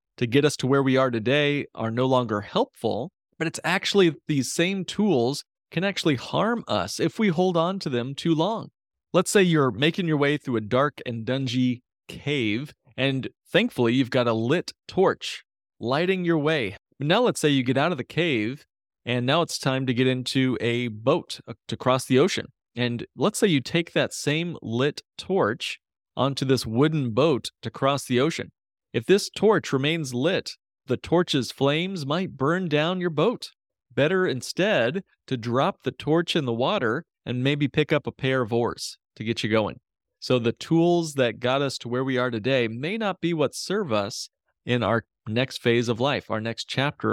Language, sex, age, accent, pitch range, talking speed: English, male, 30-49, American, 125-165 Hz, 190 wpm